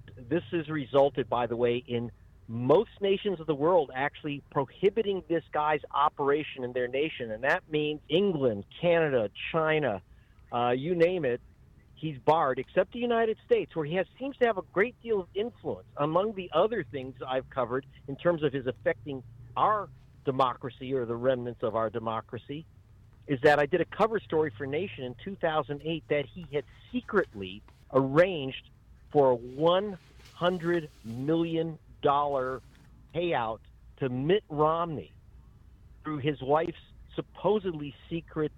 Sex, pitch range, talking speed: male, 125-175 Hz, 145 wpm